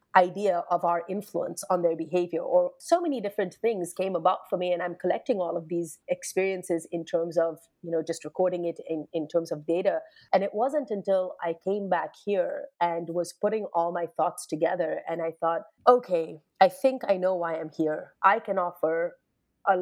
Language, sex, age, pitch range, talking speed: English, female, 30-49, 165-195 Hz, 200 wpm